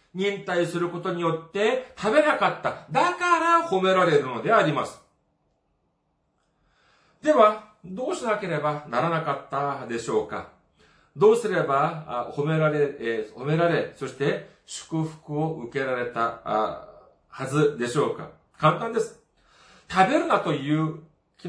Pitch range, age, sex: 140-210 Hz, 40-59, male